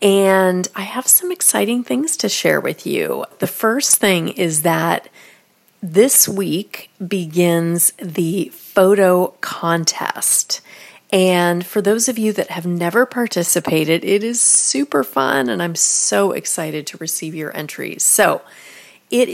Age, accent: 30-49, American